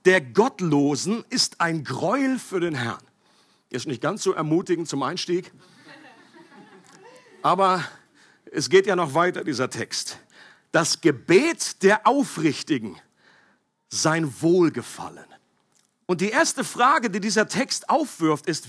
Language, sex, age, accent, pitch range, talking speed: German, male, 50-69, German, 175-245 Hz, 120 wpm